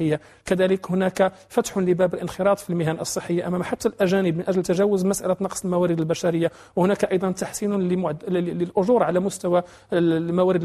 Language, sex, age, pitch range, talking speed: English, male, 40-59, 170-195 Hz, 145 wpm